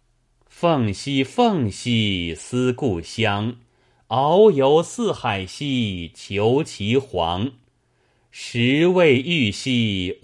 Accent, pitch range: native, 105-140 Hz